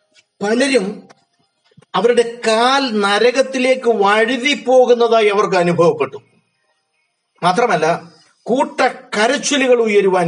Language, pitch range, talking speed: Malayalam, 160-235 Hz, 65 wpm